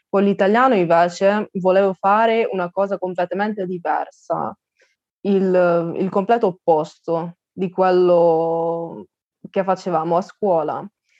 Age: 20-39